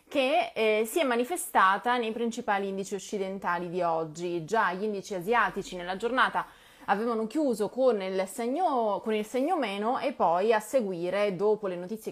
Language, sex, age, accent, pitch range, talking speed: Italian, female, 20-39, native, 175-235 Hz, 155 wpm